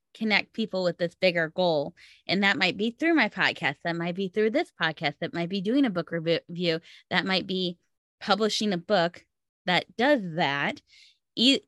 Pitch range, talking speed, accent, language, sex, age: 160-195 Hz, 185 wpm, American, English, female, 20-39